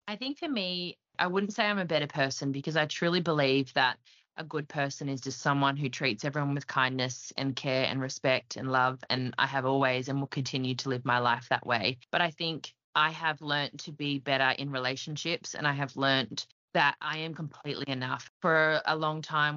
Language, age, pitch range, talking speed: English, 20-39, 130-145 Hz, 215 wpm